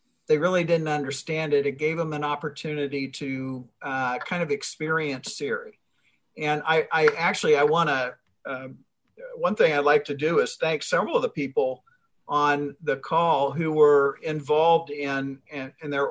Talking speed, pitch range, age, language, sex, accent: 170 wpm, 140-170 Hz, 50-69, English, male, American